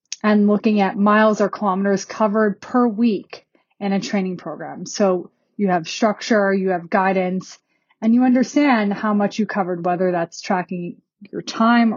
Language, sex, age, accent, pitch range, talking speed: English, female, 30-49, American, 195-230 Hz, 160 wpm